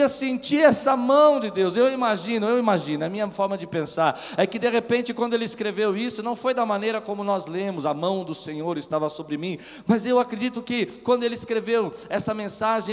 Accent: Brazilian